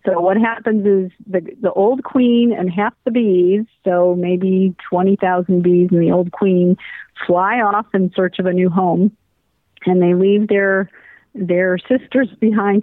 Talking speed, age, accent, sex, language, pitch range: 165 wpm, 50-69, American, female, English, 175-205 Hz